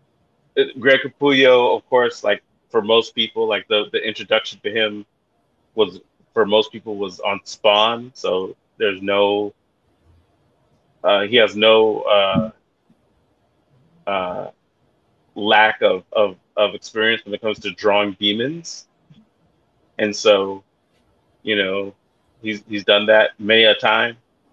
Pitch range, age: 100-130 Hz, 30-49